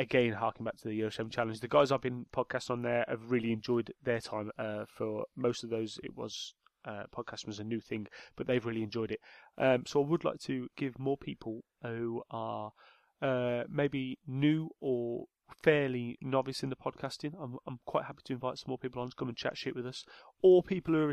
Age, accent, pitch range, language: 30-49, British, 115-140 Hz, English